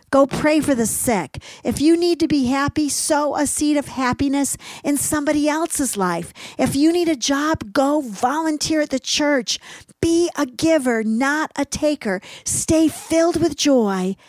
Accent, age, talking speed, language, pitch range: American, 50-69, 170 wpm, English, 205-275 Hz